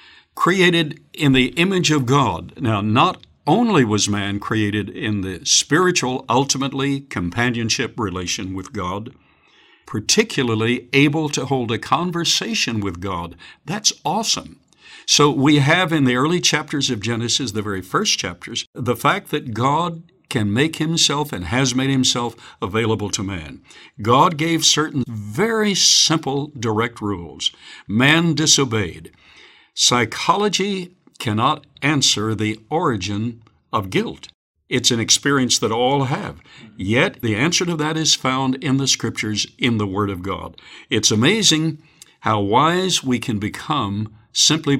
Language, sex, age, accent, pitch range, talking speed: English, male, 60-79, American, 110-155 Hz, 135 wpm